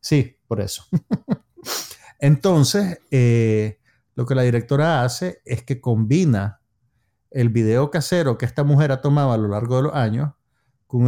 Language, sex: Spanish, male